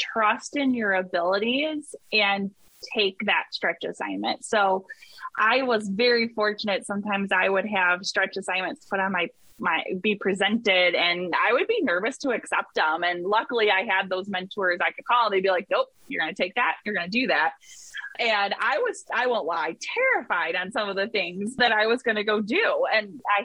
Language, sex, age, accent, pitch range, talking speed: English, female, 20-39, American, 190-245 Hz, 200 wpm